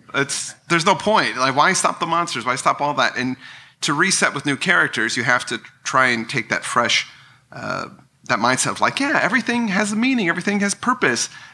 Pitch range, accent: 110-145 Hz, American